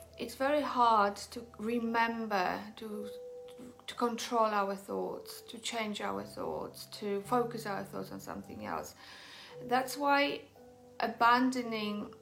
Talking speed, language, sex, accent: 120 wpm, English, female, British